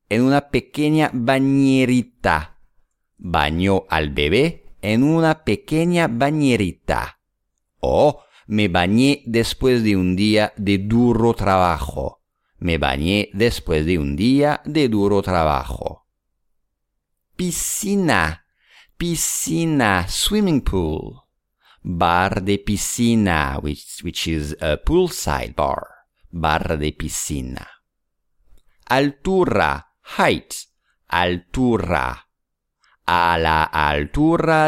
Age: 50-69